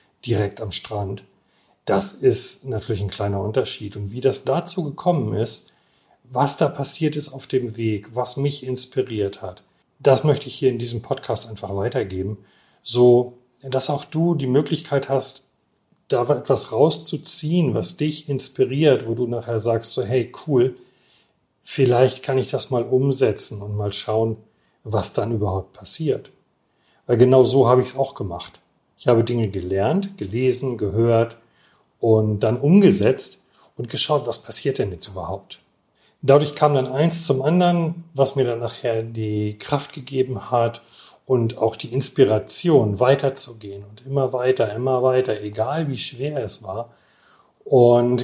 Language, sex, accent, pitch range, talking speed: German, male, German, 110-140 Hz, 150 wpm